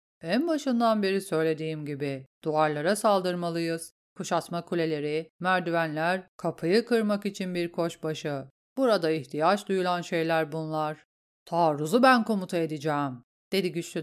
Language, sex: Turkish, female